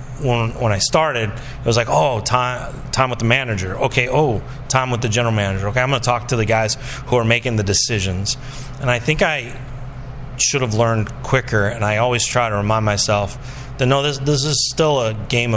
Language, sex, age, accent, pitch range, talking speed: English, male, 30-49, American, 110-130 Hz, 220 wpm